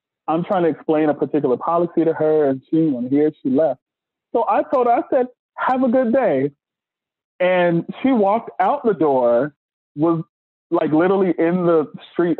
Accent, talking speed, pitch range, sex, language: American, 180 wpm, 160-255 Hz, male, English